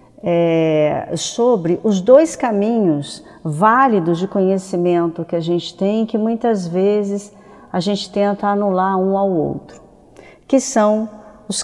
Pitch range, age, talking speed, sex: 175-220 Hz, 50-69, 125 wpm, female